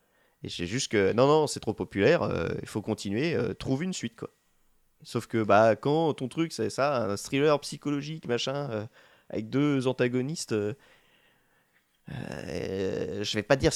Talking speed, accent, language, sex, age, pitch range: 175 wpm, French, French, male, 20-39, 105-140 Hz